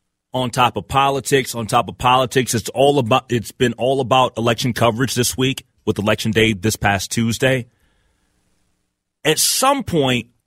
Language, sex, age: English, male, 30-49